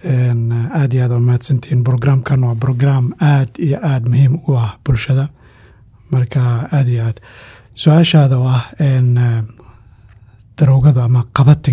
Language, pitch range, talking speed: English, 115-140 Hz, 60 wpm